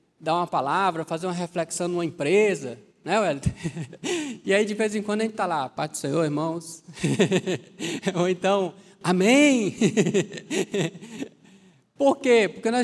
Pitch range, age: 190-240 Hz, 20-39